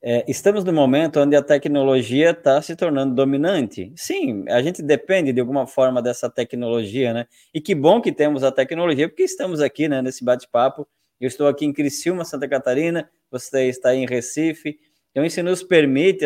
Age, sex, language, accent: 20-39, male, Portuguese, Brazilian